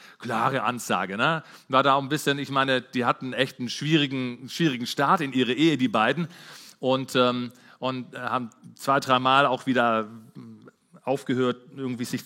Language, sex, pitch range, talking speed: German, male, 125-200 Hz, 160 wpm